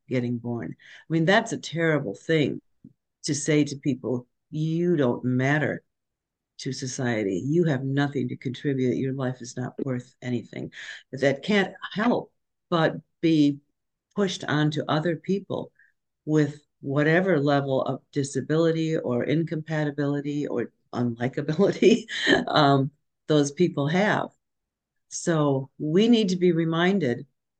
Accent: American